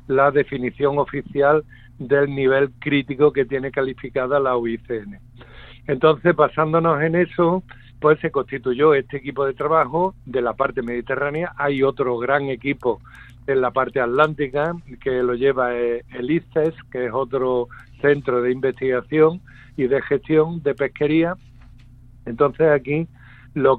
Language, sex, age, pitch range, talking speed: Spanish, male, 60-79, 130-155 Hz, 135 wpm